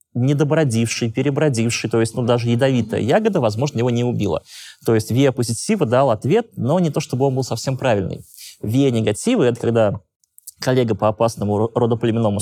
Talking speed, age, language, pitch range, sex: 165 wpm, 20-39, Russian, 105-140 Hz, male